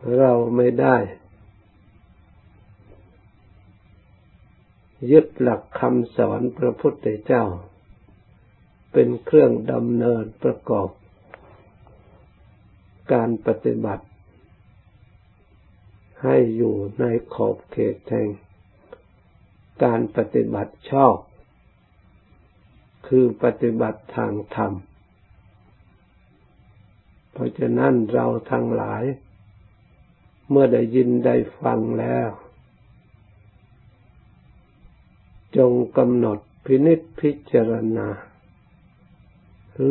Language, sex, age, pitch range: Thai, male, 60-79, 95-115 Hz